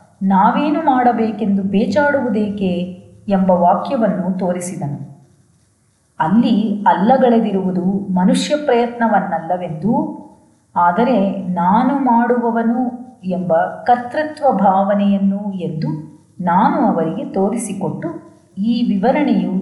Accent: native